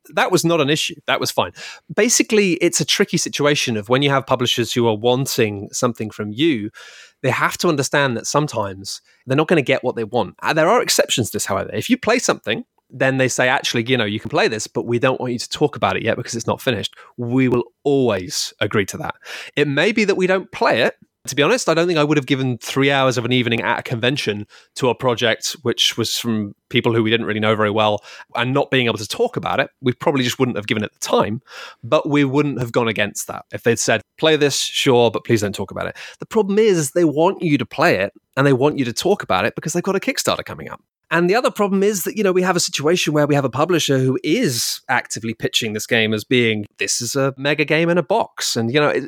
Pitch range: 115-160 Hz